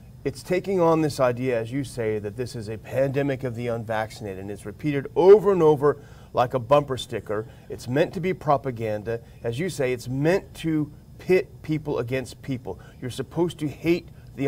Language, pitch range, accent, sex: English, 125-160 Hz, American, male